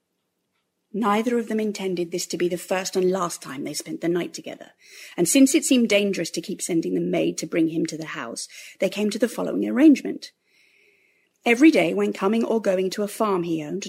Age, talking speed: 40-59, 215 wpm